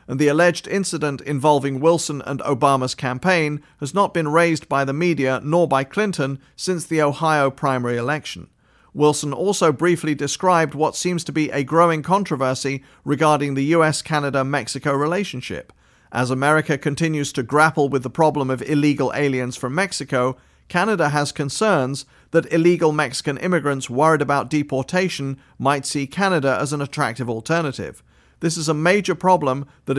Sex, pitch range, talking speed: male, 135-165 Hz, 150 wpm